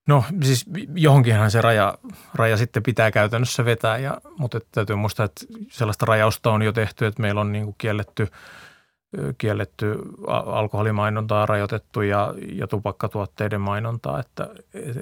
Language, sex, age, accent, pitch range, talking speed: Finnish, male, 30-49, native, 105-125 Hz, 135 wpm